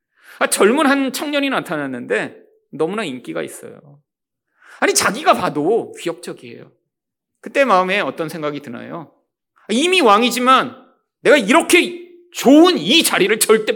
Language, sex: Korean, male